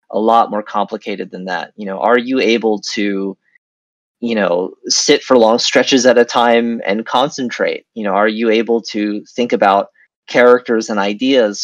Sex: male